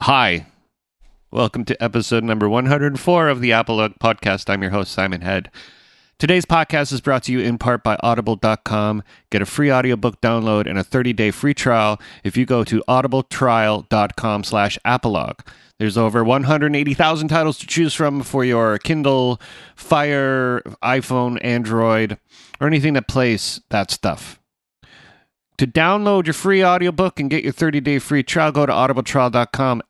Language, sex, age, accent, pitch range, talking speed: English, male, 30-49, American, 110-140 Hz, 150 wpm